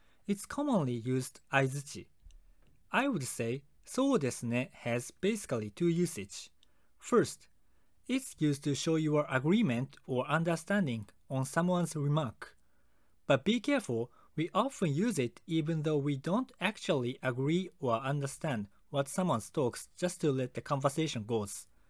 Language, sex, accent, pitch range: Japanese, male, native, 120-185 Hz